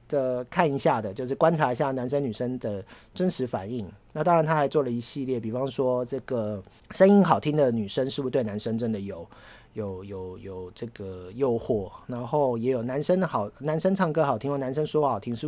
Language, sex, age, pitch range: Chinese, male, 40-59, 105-140 Hz